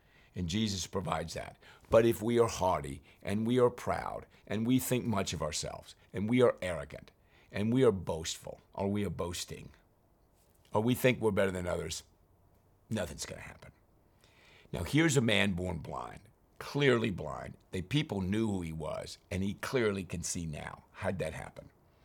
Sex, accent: male, American